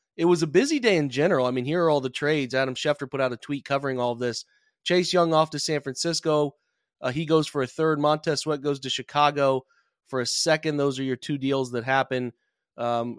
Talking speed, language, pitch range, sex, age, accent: 230 wpm, English, 125-150 Hz, male, 30-49, American